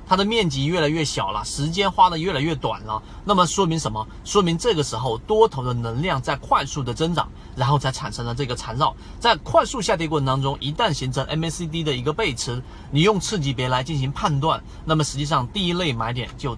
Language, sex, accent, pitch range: Chinese, male, native, 120-160 Hz